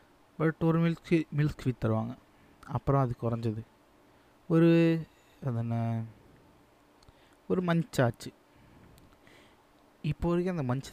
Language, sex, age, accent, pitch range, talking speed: Tamil, male, 20-39, native, 110-140 Hz, 100 wpm